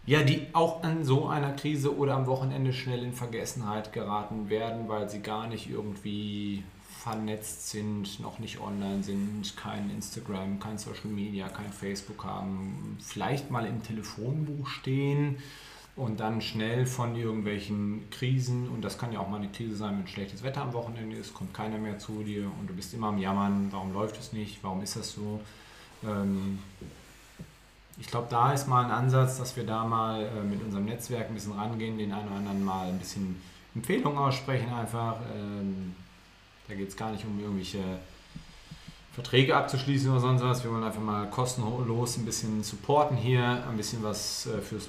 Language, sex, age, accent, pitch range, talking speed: German, male, 40-59, German, 105-125 Hz, 180 wpm